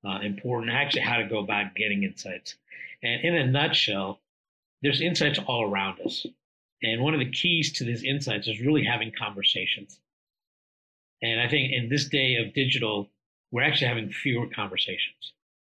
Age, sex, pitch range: 50-69, male, 110-135 Hz